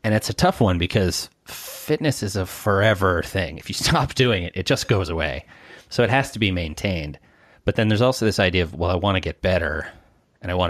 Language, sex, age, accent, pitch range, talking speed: English, male, 30-49, American, 85-120 Hz, 235 wpm